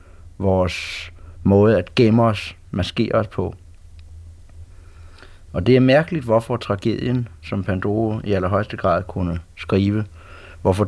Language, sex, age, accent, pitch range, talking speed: Danish, male, 60-79, native, 85-100 Hz, 120 wpm